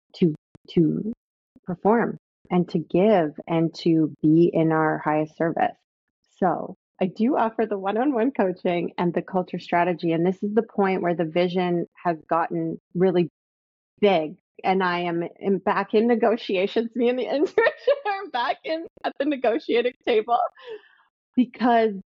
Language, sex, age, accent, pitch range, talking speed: English, female, 30-49, American, 175-220 Hz, 150 wpm